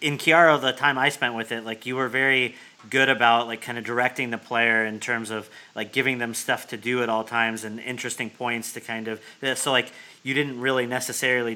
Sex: male